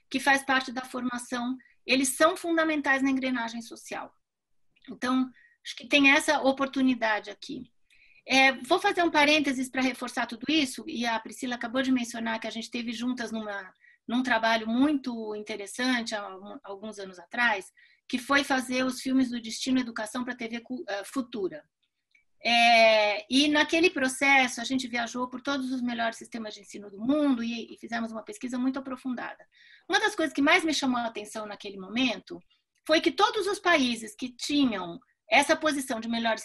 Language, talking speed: Portuguese, 170 wpm